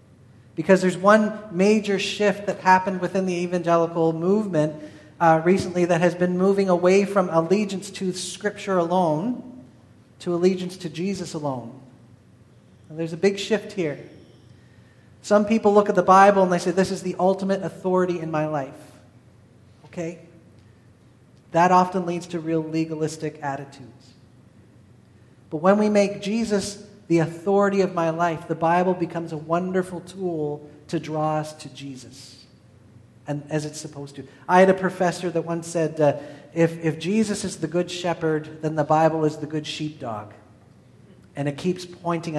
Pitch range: 145-180 Hz